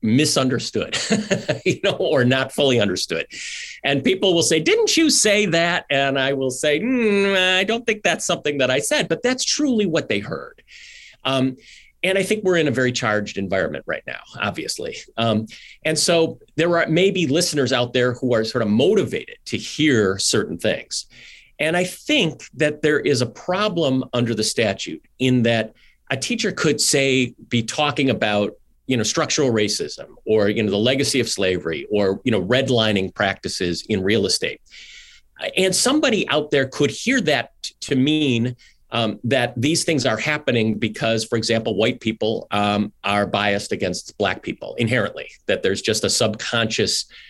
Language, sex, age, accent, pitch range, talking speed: English, male, 40-59, American, 110-170 Hz, 170 wpm